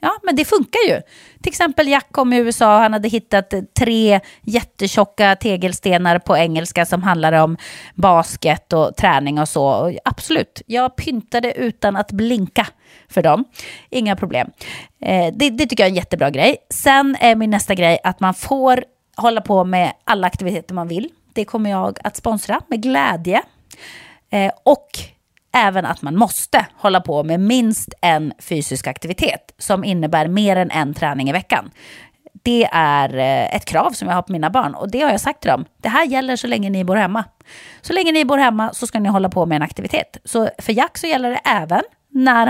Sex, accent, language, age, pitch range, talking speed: female, Swedish, English, 30-49, 175-240 Hz, 190 wpm